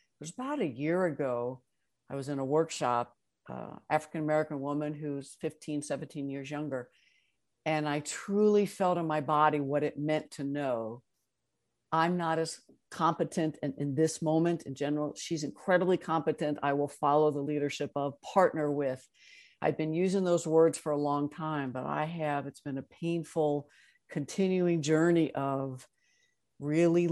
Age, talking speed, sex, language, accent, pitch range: 60-79, 160 wpm, female, English, American, 145-165 Hz